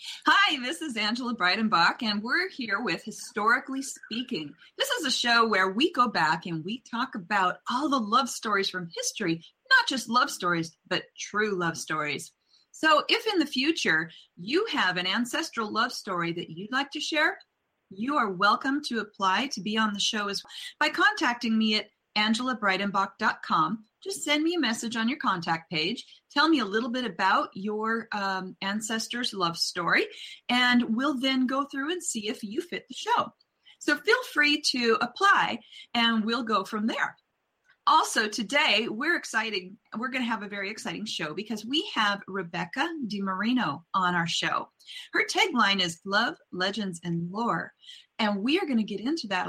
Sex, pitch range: female, 200-285 Hz